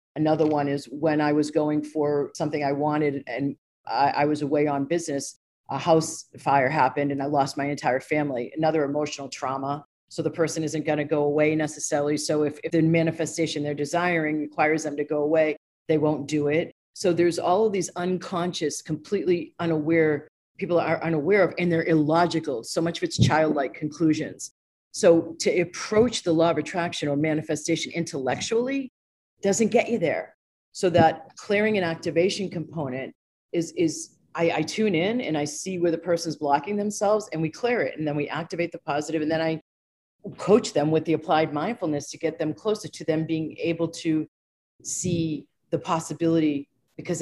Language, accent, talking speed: English, American, 180 wpm